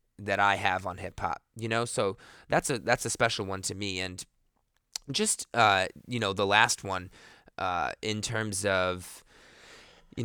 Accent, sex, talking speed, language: American, male, 170 wpm, English